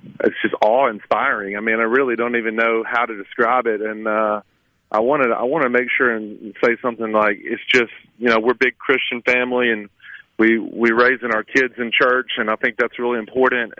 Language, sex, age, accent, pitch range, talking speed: English, male, 40-59, American, 110-135 Hz, 220 wpm